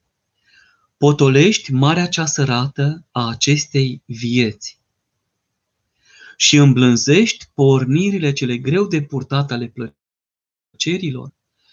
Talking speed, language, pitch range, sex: 80 wpm, Romanian, 125-155 Hz, male